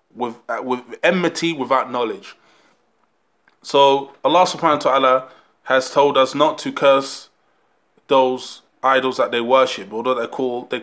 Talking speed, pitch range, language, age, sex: 165 wpm, 120-140 Hz, English, 20-39, male